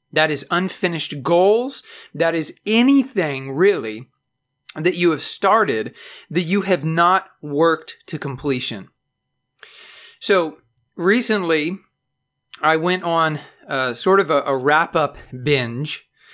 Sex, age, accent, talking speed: male, 40-59, American, 115 wpm